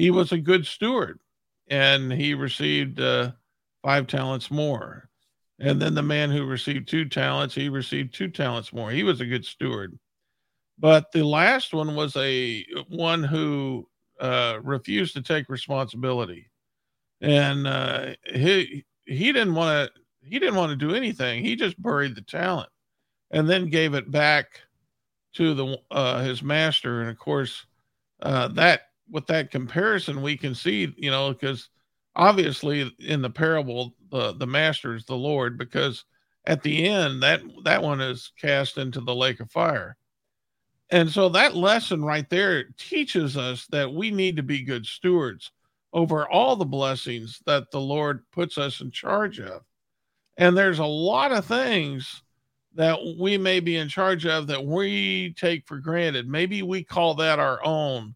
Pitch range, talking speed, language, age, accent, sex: 130-170 Hz, 165 wpm, English, 50-69, American, male